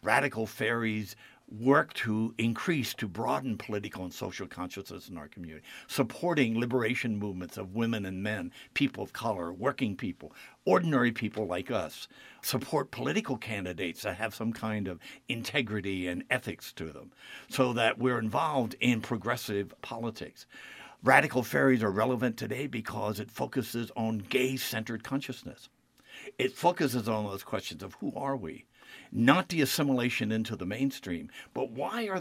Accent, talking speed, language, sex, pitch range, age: American, 145 wpm, English, male, 105-135 Hz, 60-79